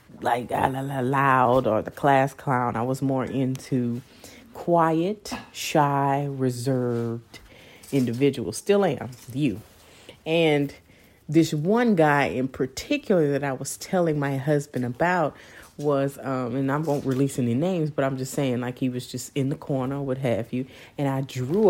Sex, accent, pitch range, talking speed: female, American, 120-145 Hz, 150 wpm